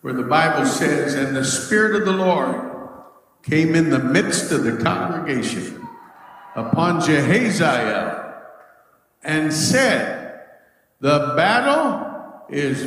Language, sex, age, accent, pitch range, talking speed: English, male, 60-79, American, 160-215 Hz, 110 wpm